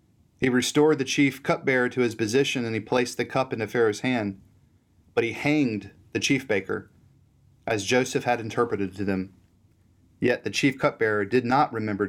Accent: American